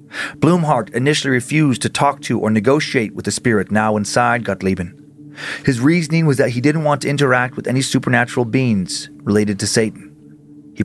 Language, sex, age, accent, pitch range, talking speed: English, male, 40-59, American, 115-145 Hz, 170 wpm